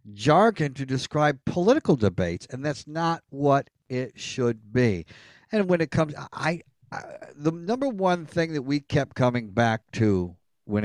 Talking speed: 160 wpm